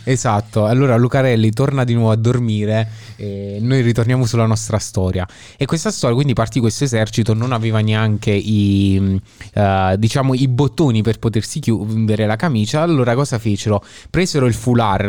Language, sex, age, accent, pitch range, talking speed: Italian, male, 20-39, native, 105-130 Hz, 160 wpm